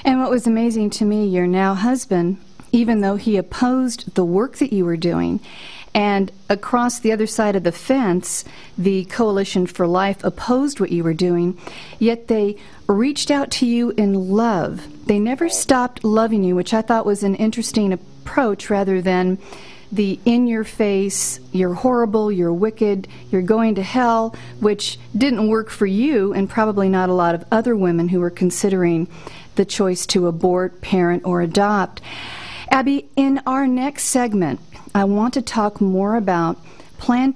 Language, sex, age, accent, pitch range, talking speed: English, female, 40-59, American, 185-230 Hz, 165 wpm